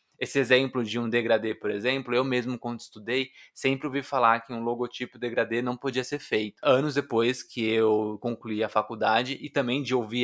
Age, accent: 20-39, Brazilian